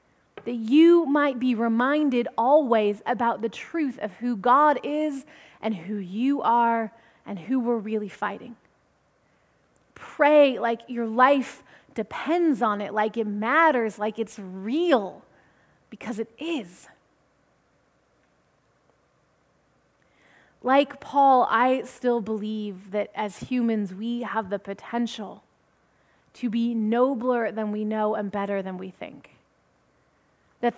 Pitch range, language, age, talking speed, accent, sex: 220-255 Hz, English, 20-39, 120 wpm, American, female